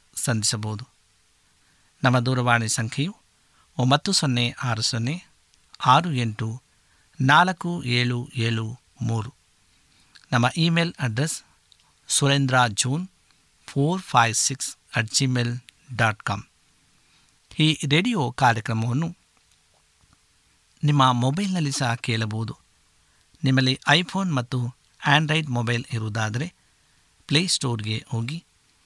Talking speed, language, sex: 85 wpm, Kannada, male